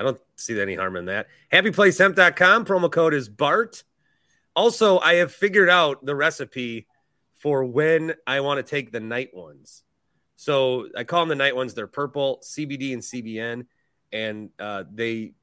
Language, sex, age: English, male, 30-49